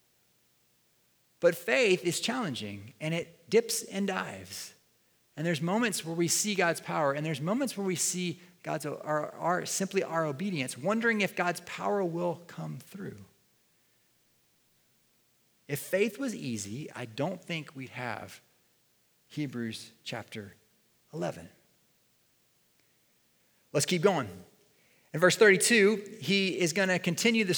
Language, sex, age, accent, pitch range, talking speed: English, male, 30-49, American, 145-205 Hz, 130 wpm